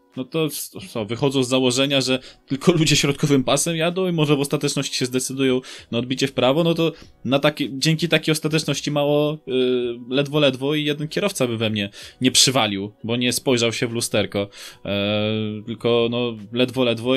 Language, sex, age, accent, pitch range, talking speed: Polish, male, 20-39, native, 110-145 Hz, 165 wpm